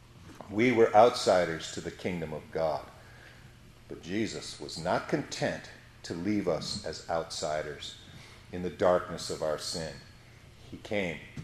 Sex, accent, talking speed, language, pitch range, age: male, American, 135 wpm, English, 90-120 Hz, 50-69